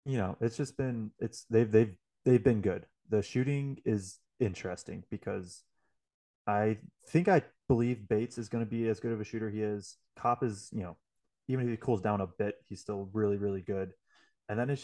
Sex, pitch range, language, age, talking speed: male, 95-115 Hz, English, 20-39, 205 wpm